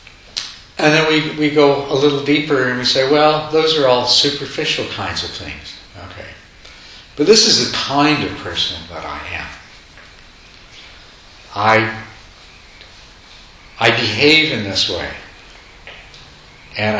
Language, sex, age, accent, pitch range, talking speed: English, male, 60-79, American, 90-115 Hz, 130 wpm